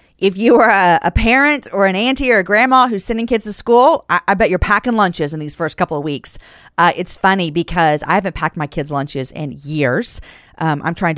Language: English